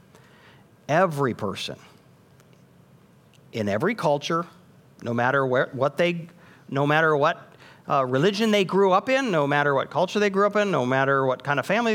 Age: 50-69